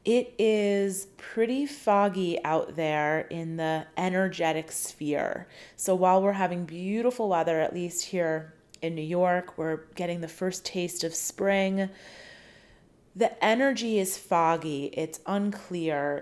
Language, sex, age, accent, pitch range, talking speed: English, female, 30-49, American, 170-205 Hz, 130 wpm